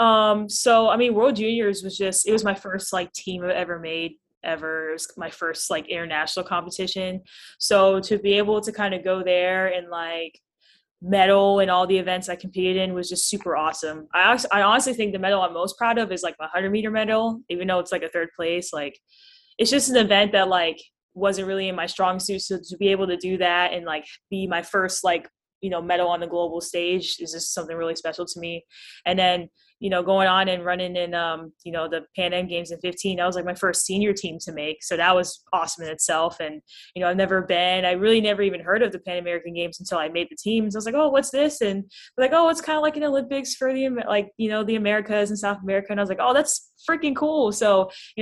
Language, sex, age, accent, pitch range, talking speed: English, female, 10-29, American, 175-205 Hz, 250 wpm